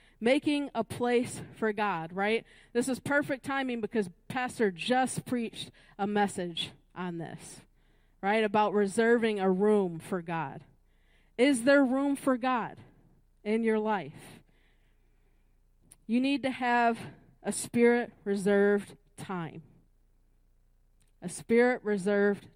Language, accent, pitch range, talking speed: English, American, 150-235 Hz, 110 wpm